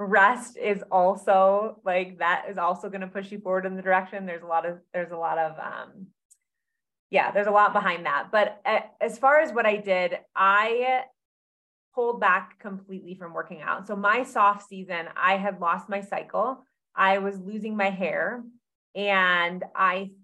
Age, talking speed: 20-39, 180 wpm